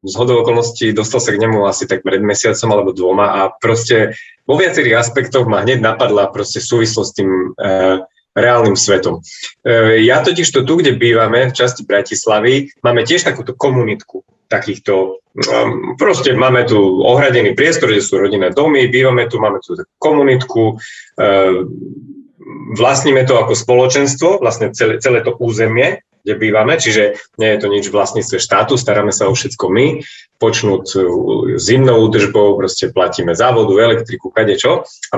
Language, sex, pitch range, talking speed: Slovak, male, 105-135 Hz, 150 wpm